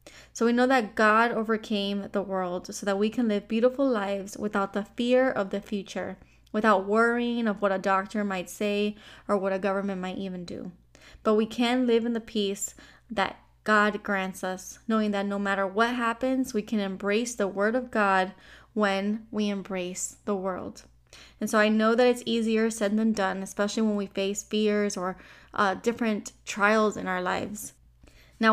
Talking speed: 185 wpm